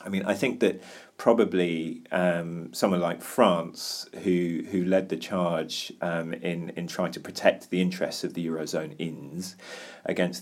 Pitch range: 85-100 Hz